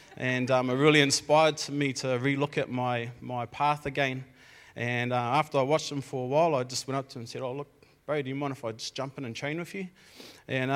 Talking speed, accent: 255 wpm, Australian